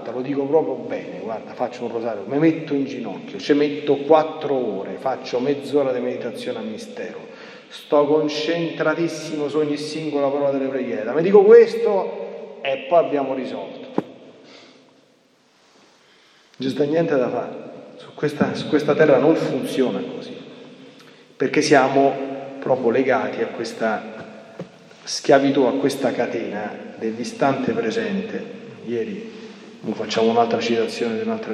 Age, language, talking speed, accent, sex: 40-59, Italian, 130 wpm, native, male